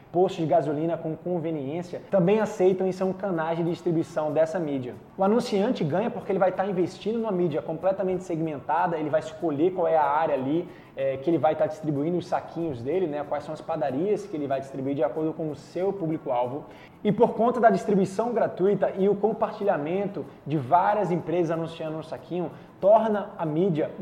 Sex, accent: male, Brazilian